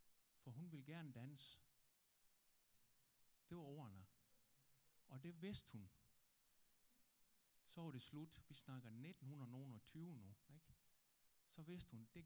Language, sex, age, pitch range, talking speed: Danish, male, 60-79, 115-160 Hz, 125 wpm